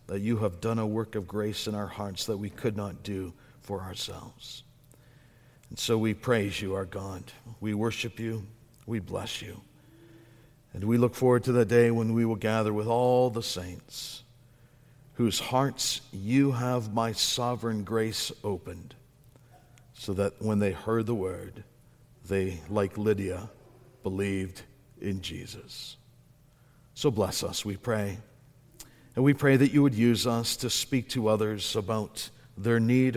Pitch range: 105-125 Hz